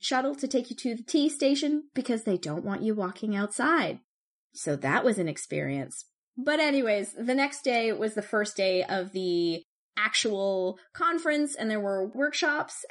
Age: 20-39